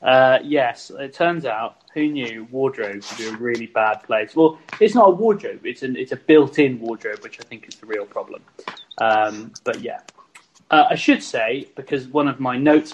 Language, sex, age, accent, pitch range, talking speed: English, male, 20-39, British, 120-160 Hz, 205 wpm